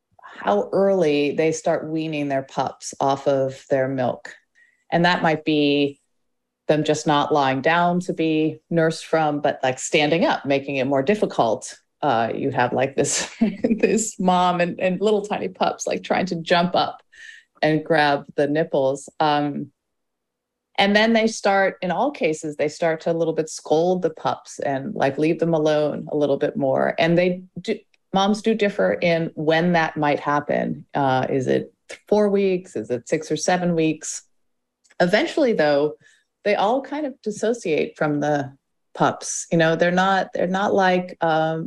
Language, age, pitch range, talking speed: English, 30-49, 150-195 Hz, 170 wpm